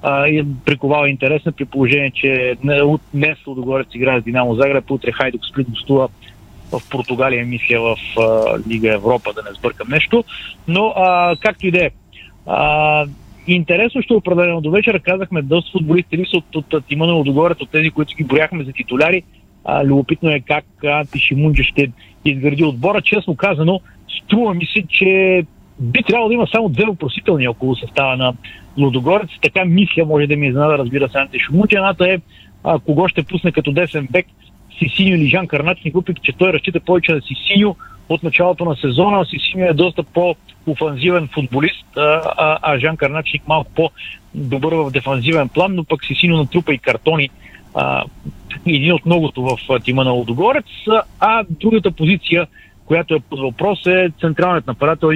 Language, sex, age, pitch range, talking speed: Bulgarian, male, 50-69, 135-175 Hz, 170 wpm